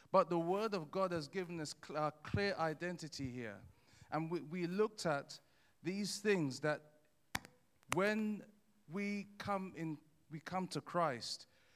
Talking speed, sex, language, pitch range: 155 wpm, male, English, 140-180 Hz